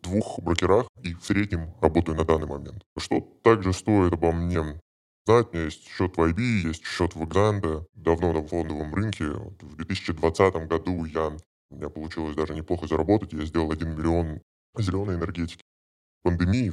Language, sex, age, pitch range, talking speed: Russian, female, 20-39, 80-95 Hz, 170 wpm